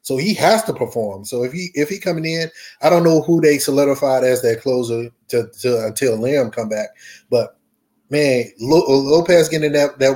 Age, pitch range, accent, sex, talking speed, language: 20-39, 120-145 Hz, American, male, 200 wpm, English